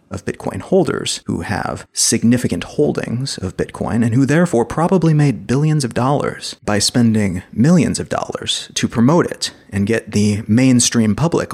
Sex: male